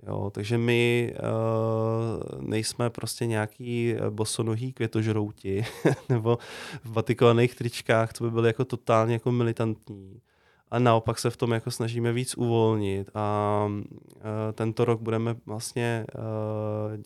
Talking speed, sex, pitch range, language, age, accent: 125 wpm, male, 105-115 Hz, Czech, 20-39, native